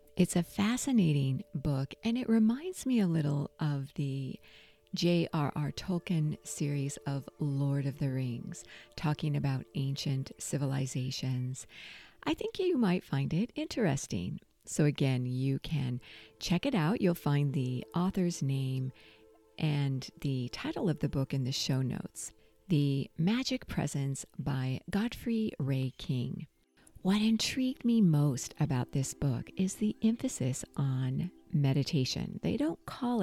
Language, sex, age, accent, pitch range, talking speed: English, female, 50-69, American, 135-185 Hz, 135 wpm